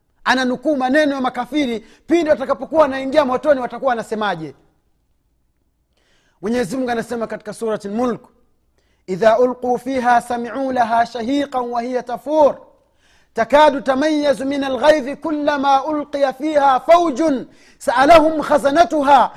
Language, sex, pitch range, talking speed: Swahili, male, 230-285 Hz, 105 wpm